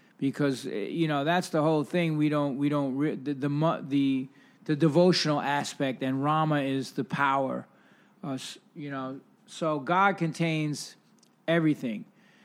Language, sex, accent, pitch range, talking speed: English, male, American, 145-190 Hz, 140 wpm